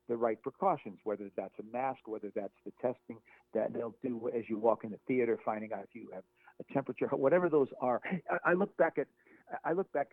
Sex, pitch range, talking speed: male, 110-145 Hz, 225 wpm